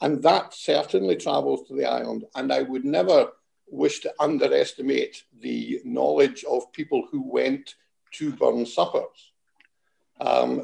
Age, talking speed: 60-79, 135 wpm